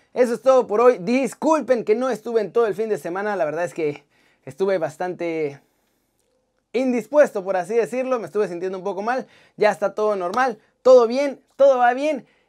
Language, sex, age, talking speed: Spanish, male, 30-49, 190 wpm